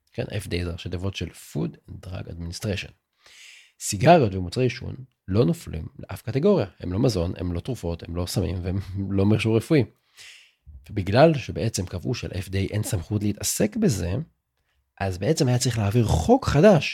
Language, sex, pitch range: Hebrew, male, 90-125 Hz